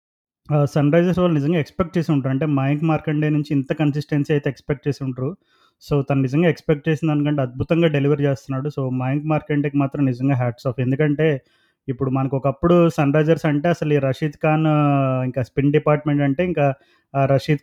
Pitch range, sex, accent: 135-155 Hz, male, native